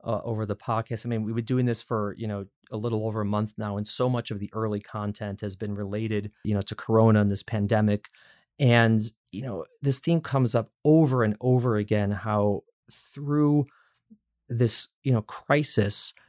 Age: 30-49